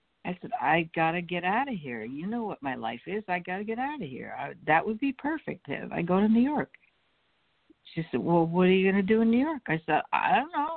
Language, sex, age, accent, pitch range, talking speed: English, female, 60-79, American, 165-235 Hz, 275 wpm